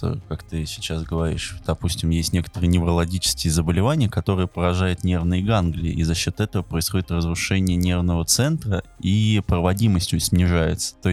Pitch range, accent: 85-105 Hz, native